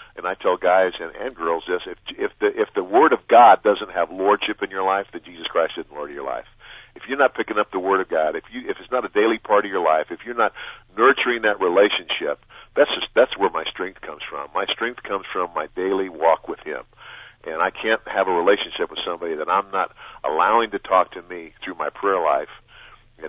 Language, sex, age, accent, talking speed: English, male, 50-69, American, 240 wpm